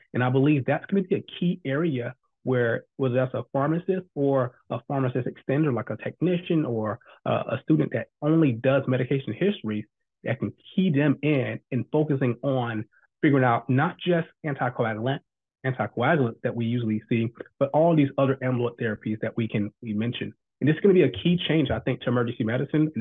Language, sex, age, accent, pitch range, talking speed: English, male, 30-49, American, 120-145 Hz, 195 wpm